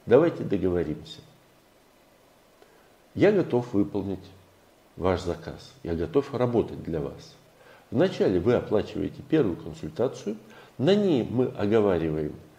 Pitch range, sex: 95-150 Hz, male